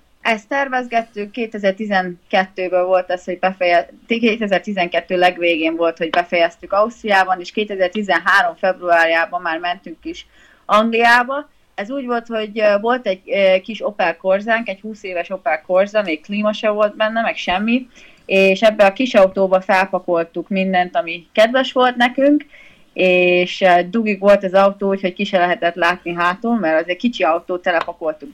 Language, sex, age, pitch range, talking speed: Hungarian, female, 30-49, 175-215 Hz, 145 wpm